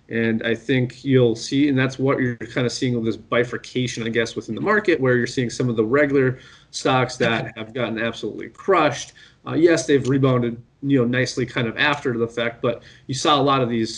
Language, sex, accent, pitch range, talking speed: English, male, American, 115-135 Hz, 215 wpm